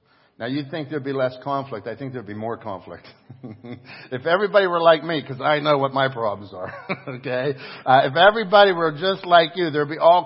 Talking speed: 210 wpm